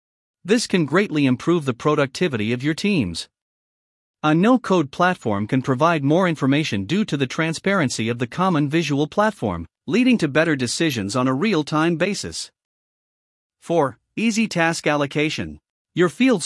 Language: English